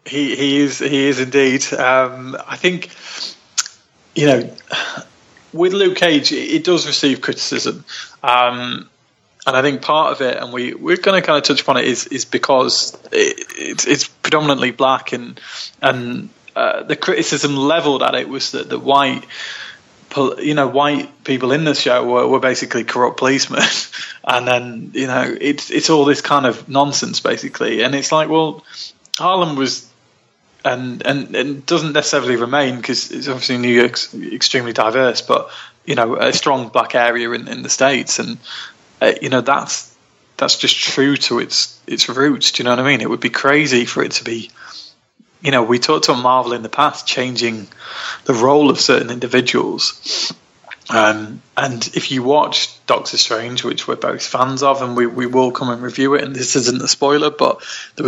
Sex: male